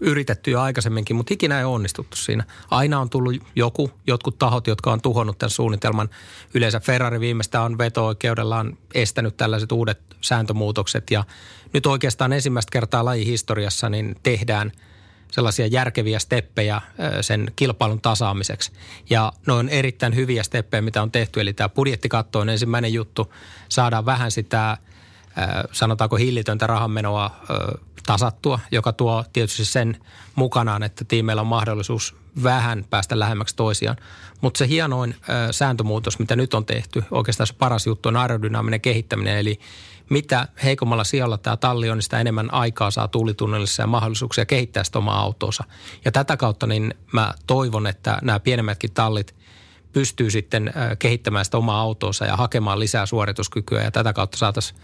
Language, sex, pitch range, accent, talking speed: Finnish, male, 105-125 Hz, native, 150 wpm